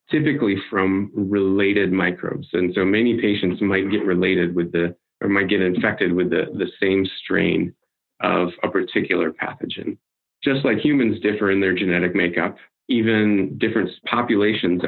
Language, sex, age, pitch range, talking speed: English, male, 30-49, 90-100 Hz, 150 wpm